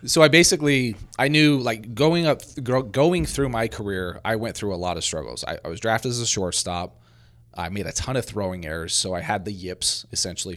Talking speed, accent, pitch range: 220 wpm, American, 90-115 Hz